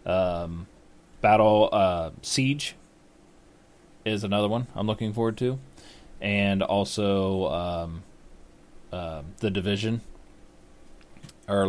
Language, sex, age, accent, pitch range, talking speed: English, male, 20-39, American, 100-120 Hz, 90 wpm